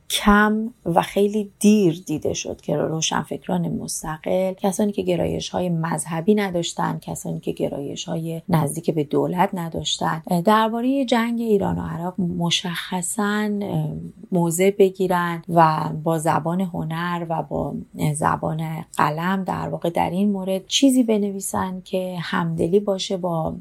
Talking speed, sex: 125 wpm, female